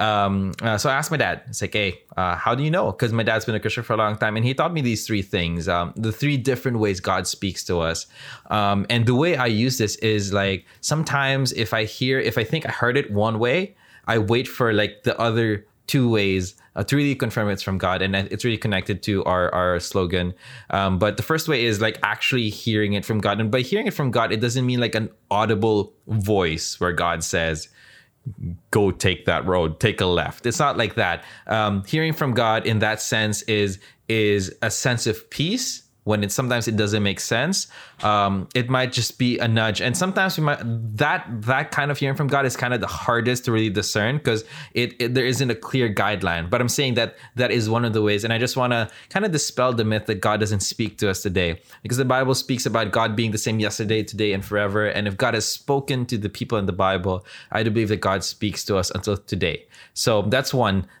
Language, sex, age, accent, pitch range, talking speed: English, male, 20-39, Filipino, 100-125 Hz, 240 wpm